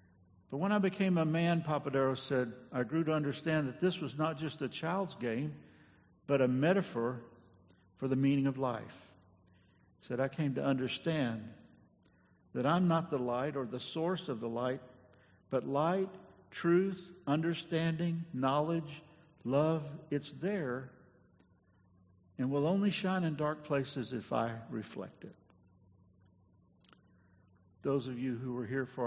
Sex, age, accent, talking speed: male, 60-79, American, 145 wpm